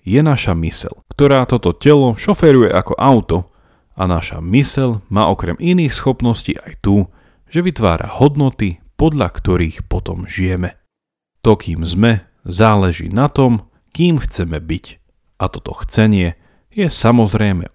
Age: 40-59